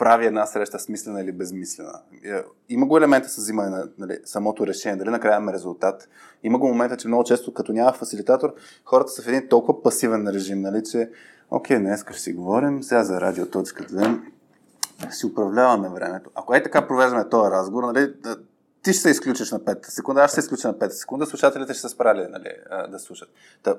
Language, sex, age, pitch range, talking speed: Bulgarian, male, 20-39, 100-140 Hz, 195 wpm